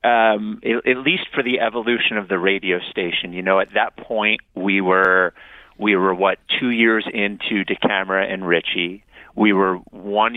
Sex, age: male, 30-49